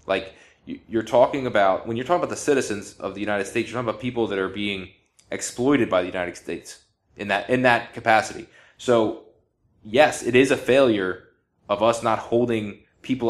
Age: 20-39